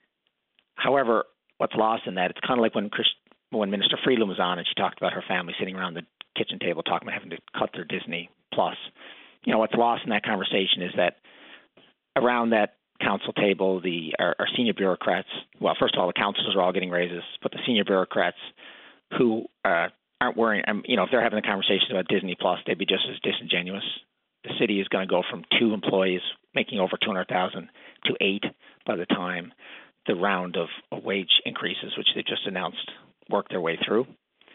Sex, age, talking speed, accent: male, 40-59, 205 wpm, American